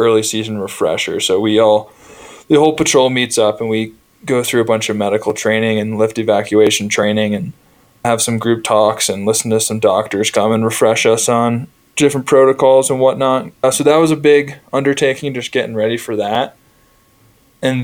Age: 20-39